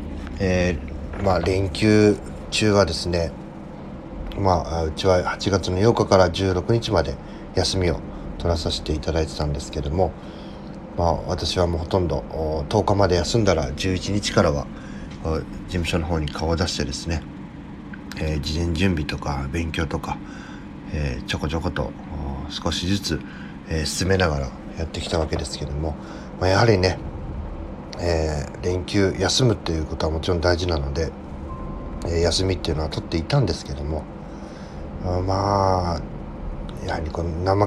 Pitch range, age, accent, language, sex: 75-95 Hz, 40-59, native, Japanese, male